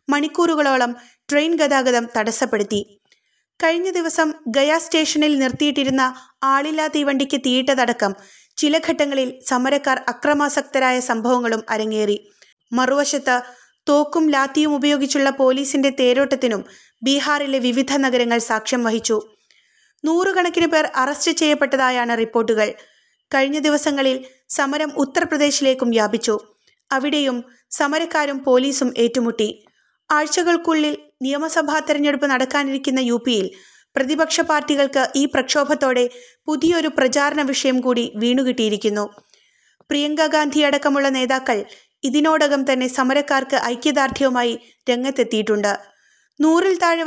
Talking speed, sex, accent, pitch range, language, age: 90 wpm, female, native, 250-295 Hz, Malayalam, 20-39